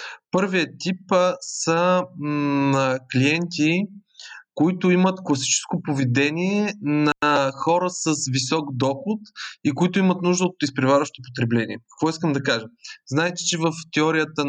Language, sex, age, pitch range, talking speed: Bulgarian, male, 20-39, 135-170 Hz, 125 wpm